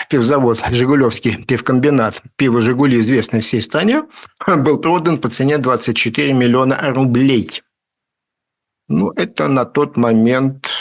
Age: 50-69